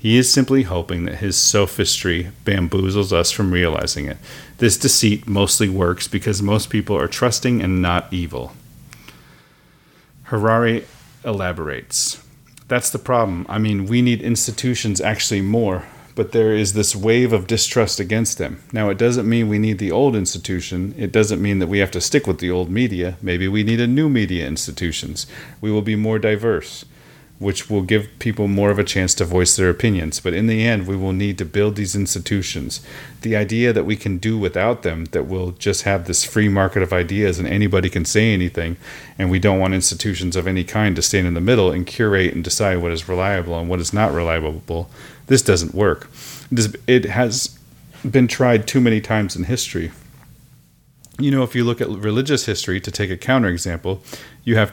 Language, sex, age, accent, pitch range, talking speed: English, male, 40-59, American, 95-115 Hz, 190 wpm